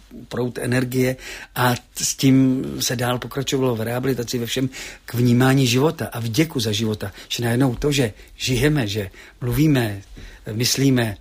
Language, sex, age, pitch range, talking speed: Czech, male, 50-69, 115-135 Hz, 145 wpm